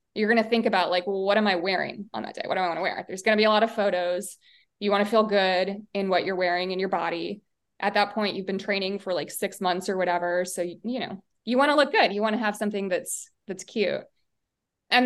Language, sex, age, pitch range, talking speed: English, female, 20-39, 185-220 Hz, 280 wpm